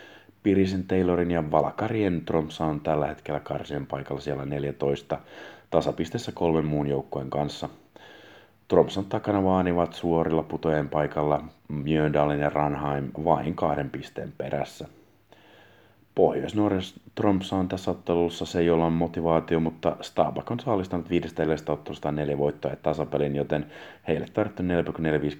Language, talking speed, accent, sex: Finnish, 120 wpm, native, male